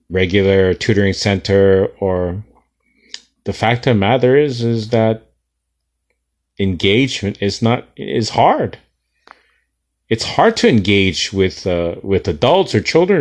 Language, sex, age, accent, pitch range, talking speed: English, male, 30-49, American, 90-145 Hz, 125 wpm